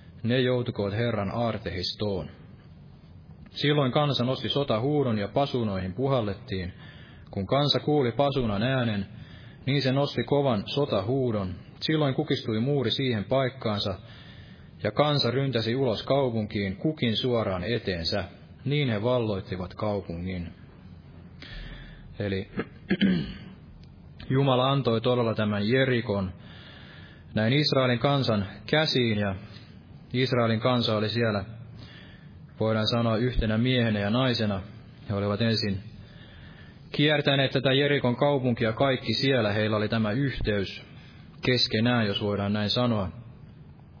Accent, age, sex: native, 20-39, male